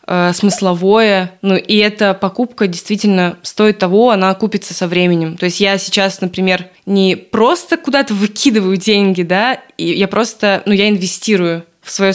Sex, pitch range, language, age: female, 185-215 Hz, Russian, 20-39